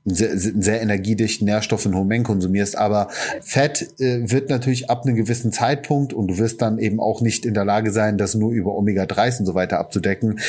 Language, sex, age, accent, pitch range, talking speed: German, male, 30-49, German, 105-120 Hz, 205 wpm